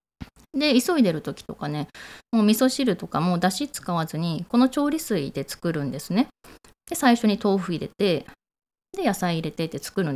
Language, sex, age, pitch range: Japanese, female, 20-39, 170-250 Hz